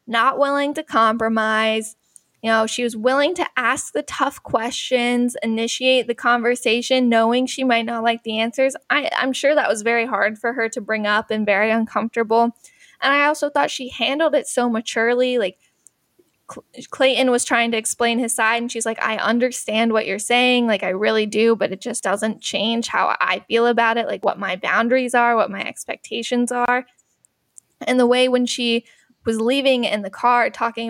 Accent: American